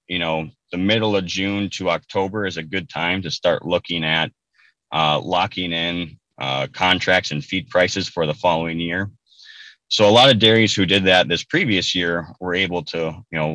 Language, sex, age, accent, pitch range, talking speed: English, male, 30-49, American, 80-95 Hz, 195 wpm